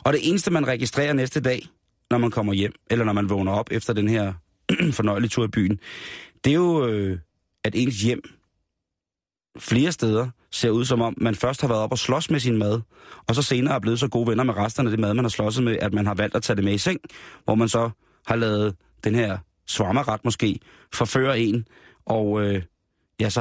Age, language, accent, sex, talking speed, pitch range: 30-49, Danish, native, male, 220 wpm, 105-125 Hz